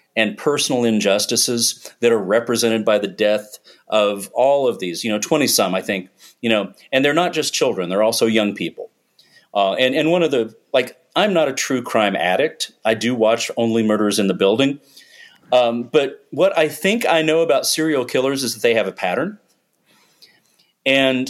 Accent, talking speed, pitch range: American, 190 wpm, 110-145 Hz